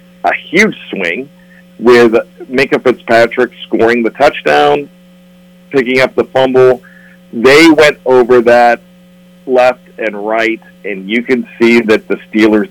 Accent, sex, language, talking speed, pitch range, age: American, male, English, 125 wpm, 110-130 Hz, 50-69